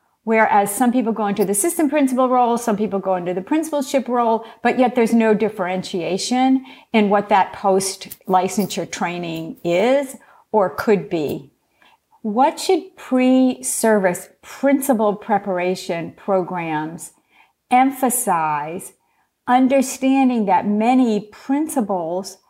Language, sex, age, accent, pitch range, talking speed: English, female, 50-69, American, 190-250 Hz, 110 wpm